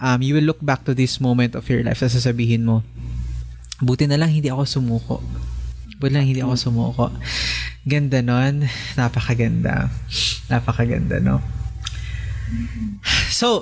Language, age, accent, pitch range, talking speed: Filipino, 20-39, native, 110-135 Hz, 140 wpm